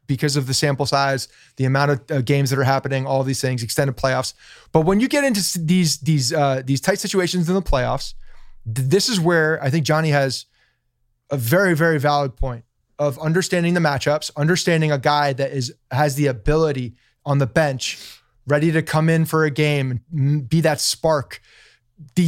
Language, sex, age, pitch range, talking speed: English, male, 30-49, 135-170 Hz, 195 wpm